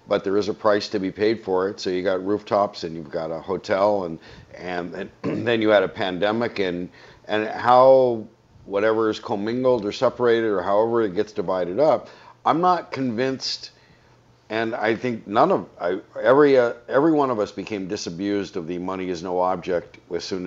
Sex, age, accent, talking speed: male, 50-69, American, 195 wpm